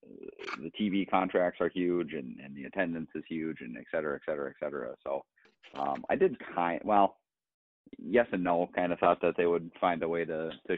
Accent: American